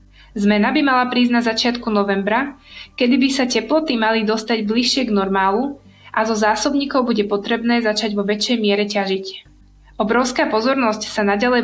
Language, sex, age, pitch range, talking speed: Slovak, female, 20-39, 210-245 Hz, 155 wpm